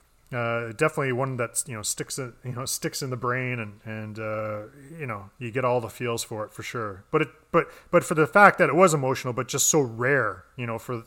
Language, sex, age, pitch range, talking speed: English, male, 30-49, 110-145 Hz, 245 wpm